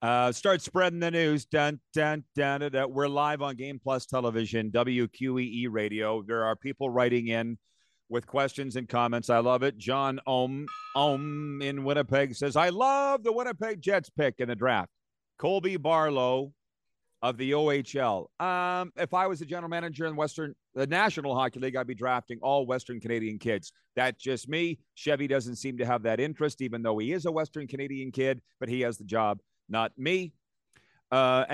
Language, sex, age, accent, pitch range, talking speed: English, male, 40-59, American, 120-155 Hz, 185 wpm